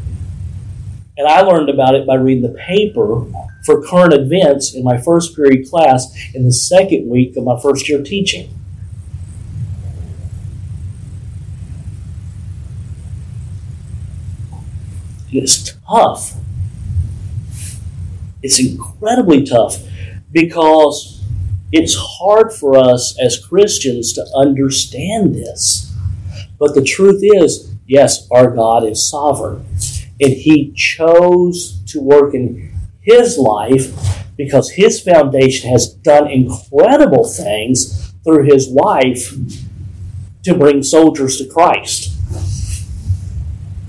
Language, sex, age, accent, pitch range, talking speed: English, male, 50-69, American, 95-140 Hz, 100 wpm